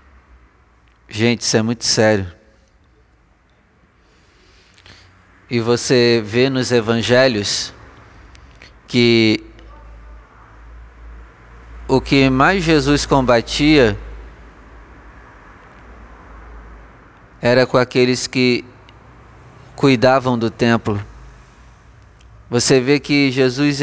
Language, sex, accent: Portuguese, male, Brazilian